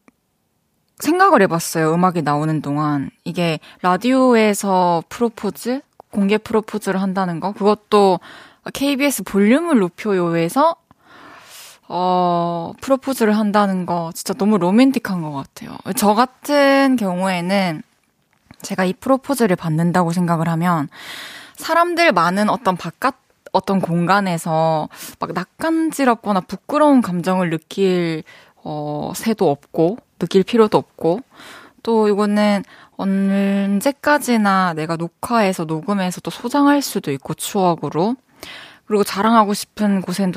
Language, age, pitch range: Korean, 20-39, 170-230 Hz